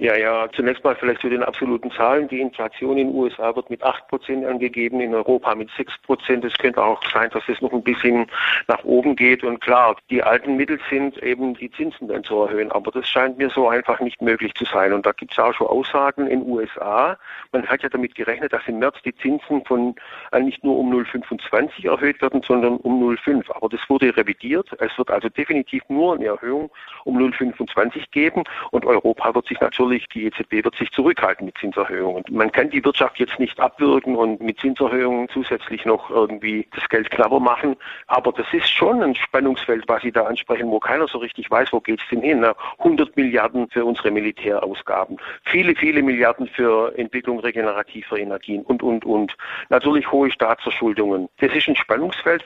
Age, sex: 50-69, male